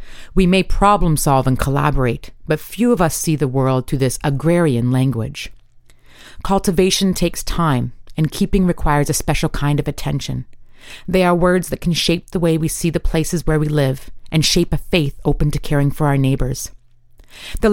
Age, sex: 30-49, female